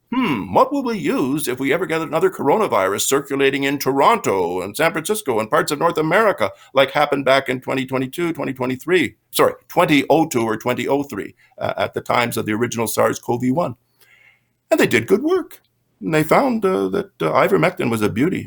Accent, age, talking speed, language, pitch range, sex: American, 50-69, 180 wpm, English, 120-165 Hz, male